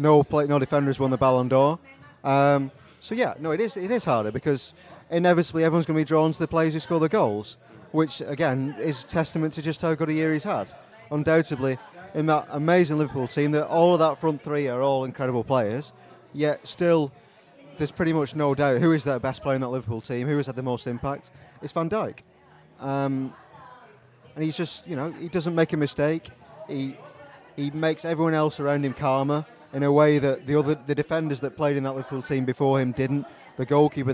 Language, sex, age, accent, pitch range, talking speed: English, male, 30-49, British, 130-155 Hz, 215 wpm